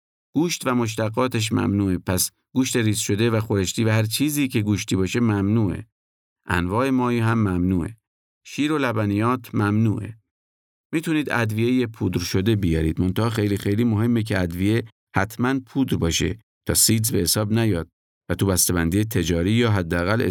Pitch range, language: 90-120 Hz, Persian